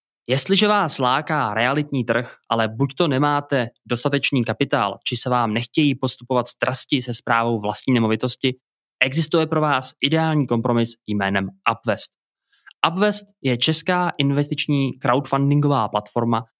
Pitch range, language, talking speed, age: 120-145 Hz, Czech, 125 wpm, 20-39